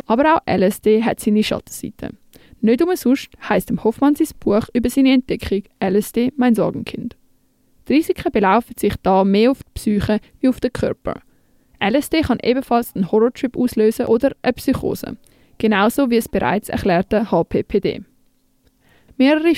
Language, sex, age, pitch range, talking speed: German, female, 20-39, 210-265 Hz, 150 wpm